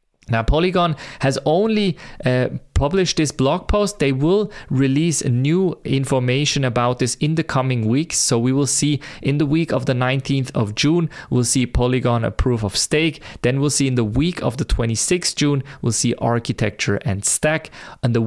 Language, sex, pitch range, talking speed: English, male, 120-150 Hz, 180 wpm